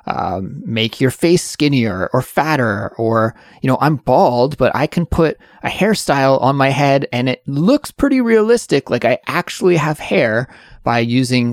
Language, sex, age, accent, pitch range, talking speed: English, male, 20-39, American, 115-145 Hz, 170 wpm